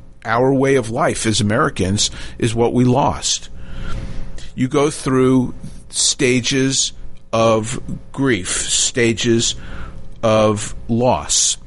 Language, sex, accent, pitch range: English, male, American, 90-120 Hz